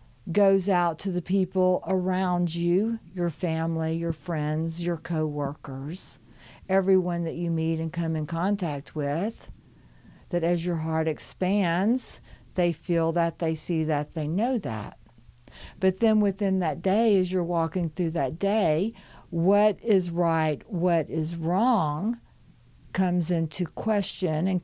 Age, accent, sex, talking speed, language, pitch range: 50-69, American, female, 140 wpm, English, 160-205 Hz